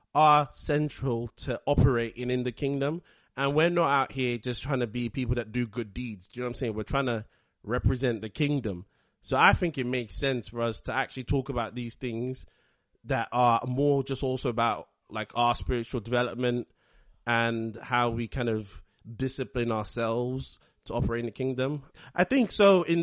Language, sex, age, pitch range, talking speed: English, male, 30-49, 115-140 Hz, 190 wpm